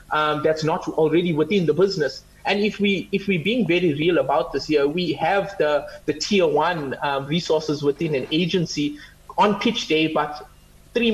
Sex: male